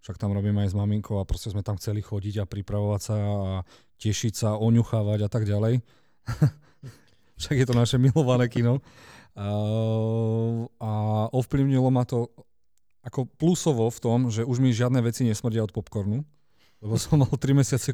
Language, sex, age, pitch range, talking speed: Slovak, male, 40-59, 100-120 Hz, 165 wpm